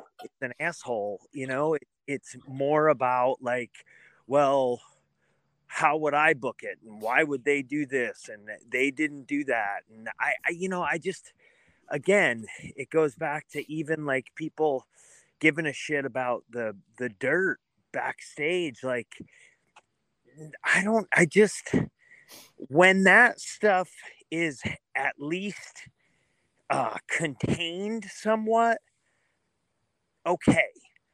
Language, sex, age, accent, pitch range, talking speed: English, male, 30-49, American, 130-175 Hz, 125 wpm